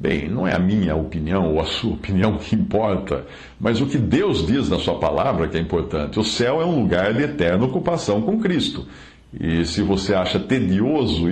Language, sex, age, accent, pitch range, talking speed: Portuguese, male, 60-79, Brazilian, 90-145 Hz, 200 wpm